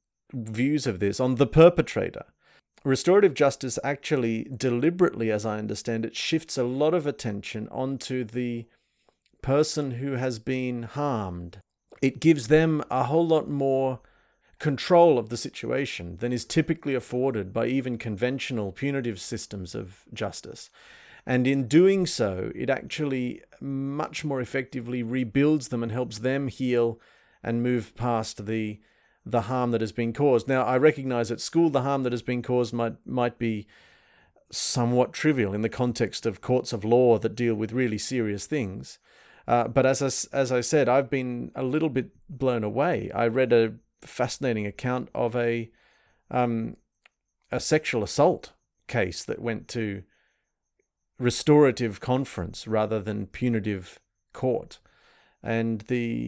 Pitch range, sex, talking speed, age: 115-140 Hz, male, 150 wpm, 40-59